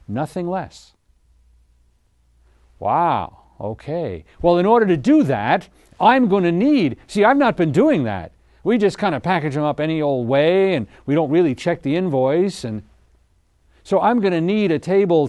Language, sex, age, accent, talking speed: English, male, 60-79, American, 175 wpm